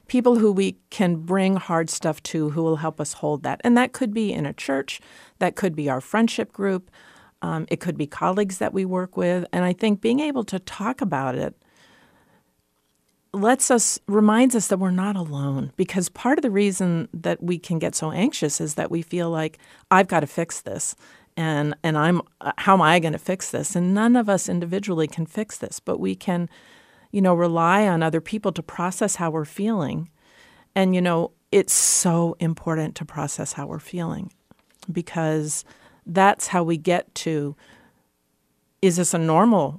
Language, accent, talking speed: English, American, 190 wpm